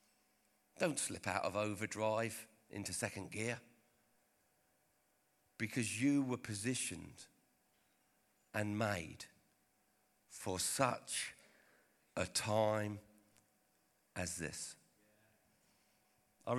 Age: 50-69